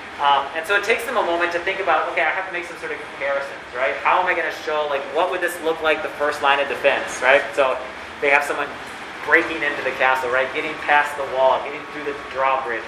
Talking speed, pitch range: 255 wpm, 135-165 Hz